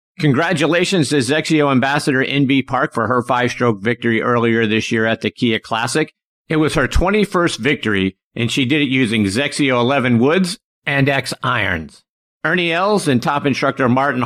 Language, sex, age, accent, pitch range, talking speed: English, male, 50-69, American, 120-155 Hz, 165 wpm